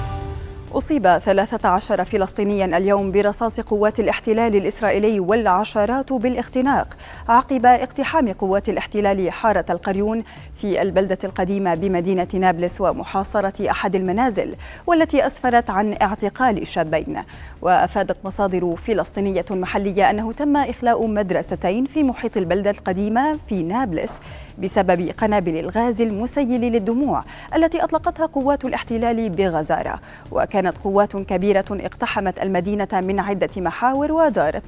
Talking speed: 105 wpm